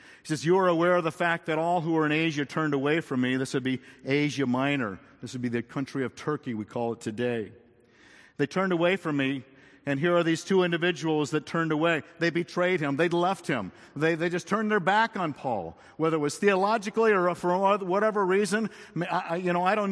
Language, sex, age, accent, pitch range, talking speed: English, male, 50-69, American, 110-165 Hz, 230 wpm